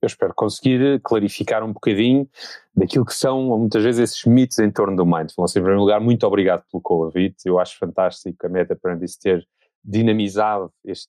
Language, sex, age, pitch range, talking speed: Portuguese, male, 30-49, 95-115 Hz, 190 wpm